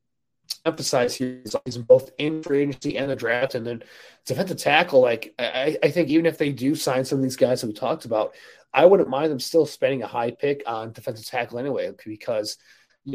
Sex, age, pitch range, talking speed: male, 30-49, 125-155 Hz, 210 wpm